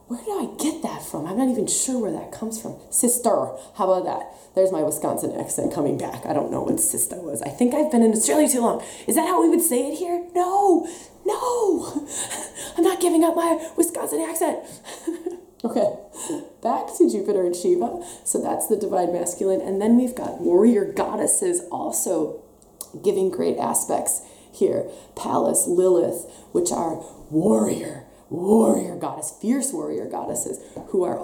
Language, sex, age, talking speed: English, female, 20-39, 170 wpm